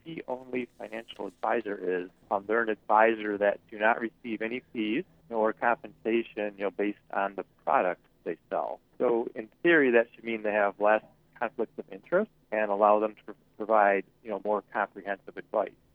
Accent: American